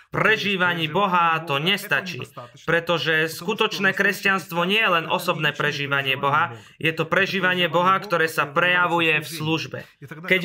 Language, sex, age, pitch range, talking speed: Slovak, male, 20-39, 160-195 Hz, 130 wpm